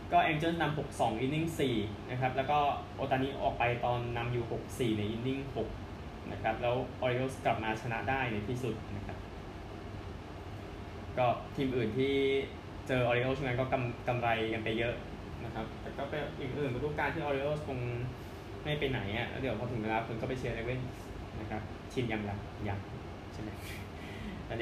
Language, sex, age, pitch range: Thai, male, 10-29, 105-140 Hz